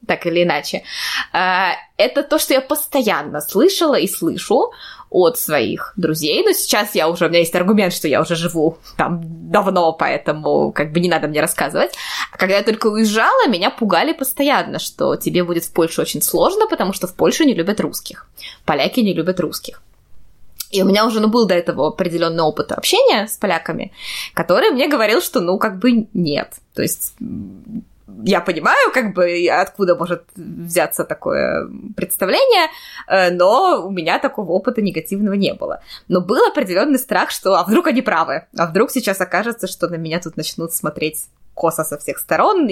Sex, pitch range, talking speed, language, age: female, 170-225 Hz, 175 wpm, Russian, 20-39